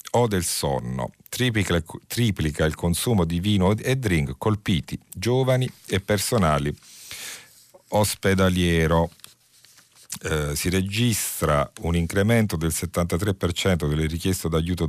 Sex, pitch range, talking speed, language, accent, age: male, 75-95 Hz, 105 wpm, Italian, native, 50-69